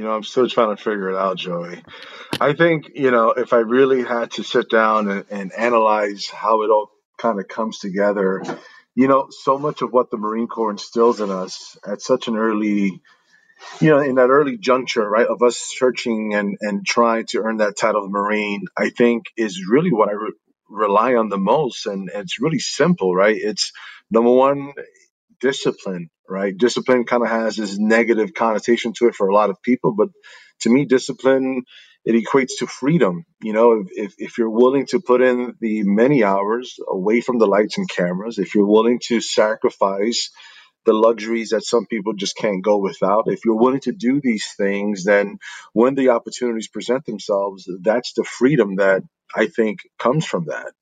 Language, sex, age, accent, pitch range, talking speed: English, male, 30-49, American, 100-125 Hz, 190 wpm